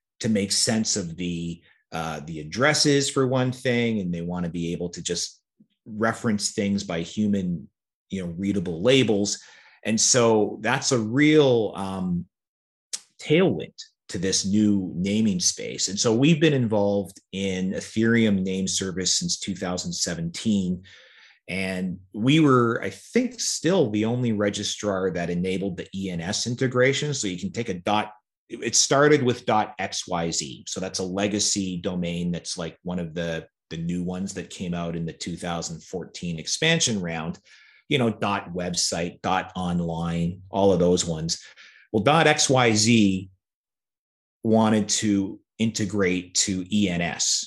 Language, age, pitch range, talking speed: English, 30-49, 90-115 Hz, 145 wpm